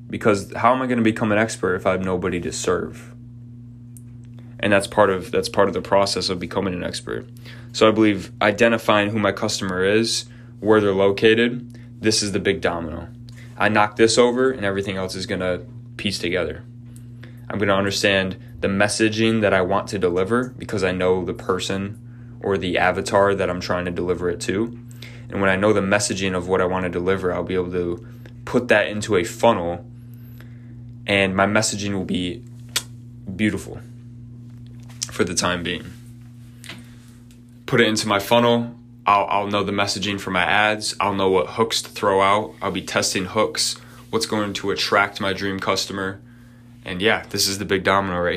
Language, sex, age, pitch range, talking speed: English, male, 20-39, 95-120 Hz, 190 wpm